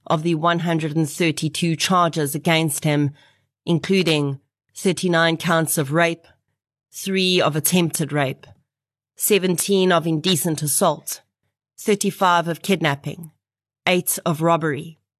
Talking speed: 100 wpm